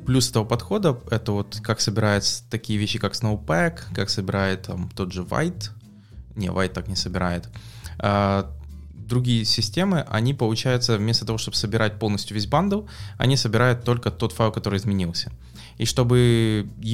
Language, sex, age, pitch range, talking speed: English, male, 20-39, 95-120 Hz, 155 wpm